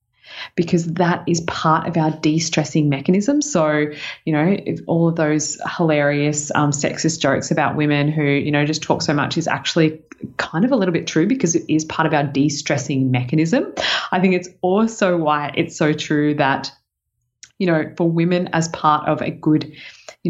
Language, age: English, 20-39